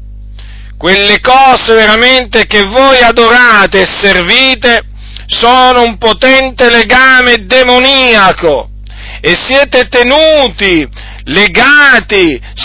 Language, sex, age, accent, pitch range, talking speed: Italian, male, 40-59, native, 155-235 Hz, 80 wpm